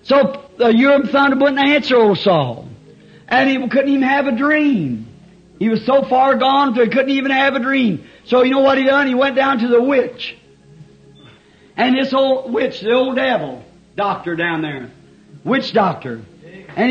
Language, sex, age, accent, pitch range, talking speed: English, male, 50-69, American, 180-270 Hz, 190 wpm